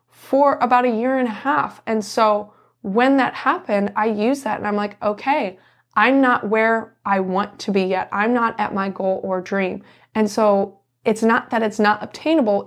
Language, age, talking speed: English, 20-39, 200 wpm